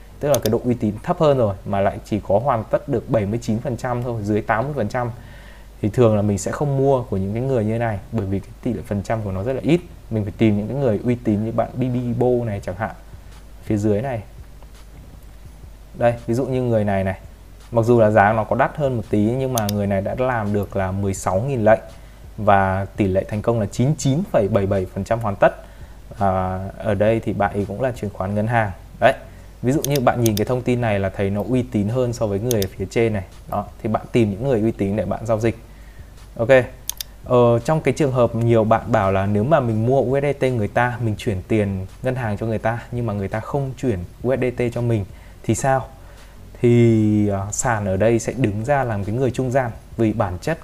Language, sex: Vietnamese, male